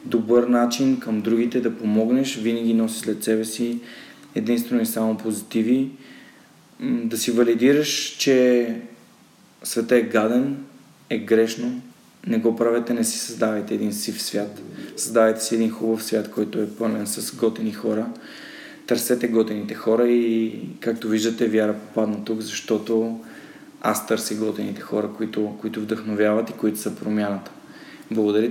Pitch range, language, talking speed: 110-120 Hz, Bulgarian, 140 wpm